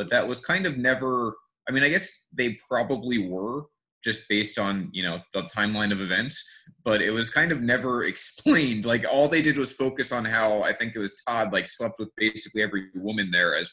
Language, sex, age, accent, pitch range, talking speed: English, male, 30-49, American, 105-135 Hz, 220 wpm